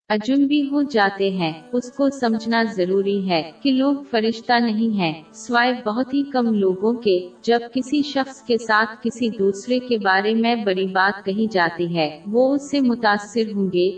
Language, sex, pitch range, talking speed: Urdu, female, 195-245 Hz, 175 wpm